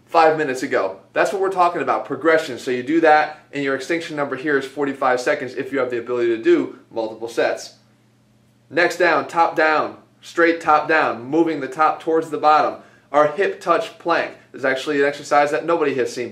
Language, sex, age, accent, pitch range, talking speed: English, male, 30-49, American, 135-170 Hz, 200 wpm